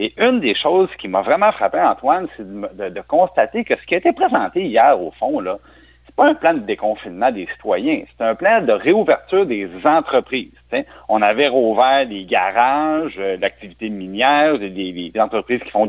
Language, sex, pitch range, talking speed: French, male, 105-160 Hz, 195 wpm